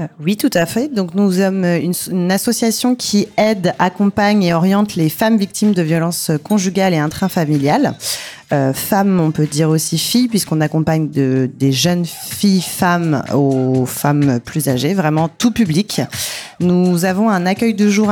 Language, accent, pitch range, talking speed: French, French, 160-200 Hz, 165 wpm